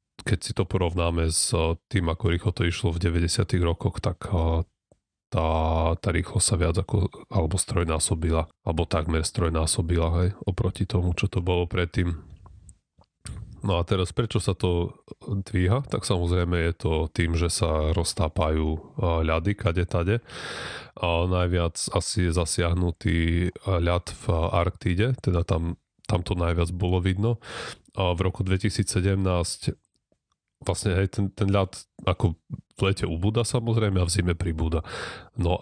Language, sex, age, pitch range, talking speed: Slovak, male, 30-49, 85-100 Hz, 135 wpm